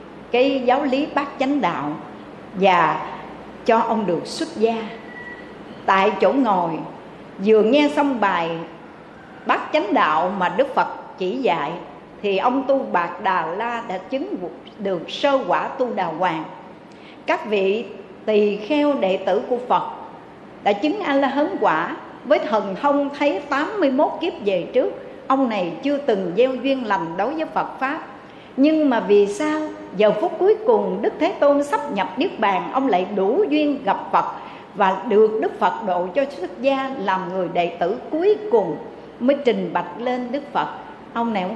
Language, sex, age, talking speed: Vietnamese, female, 60-79, 170 wpm